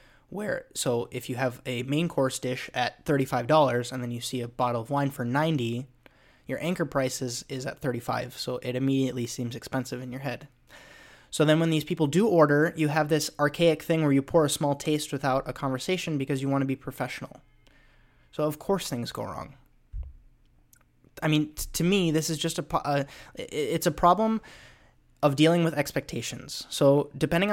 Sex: male